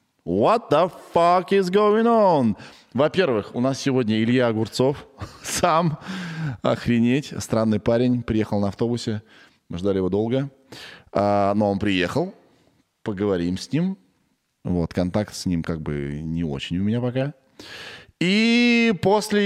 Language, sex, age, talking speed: Russian, male, 20-39, 130 wpm